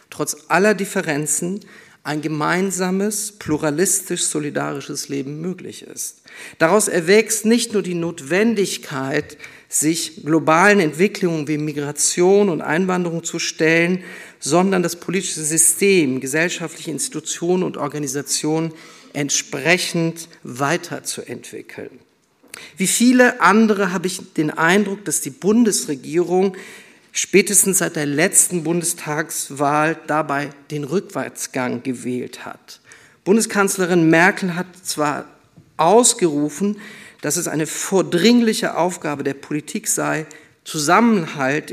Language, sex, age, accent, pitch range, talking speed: German, male, 50-69, German, 150-190 Hz, 100 wpm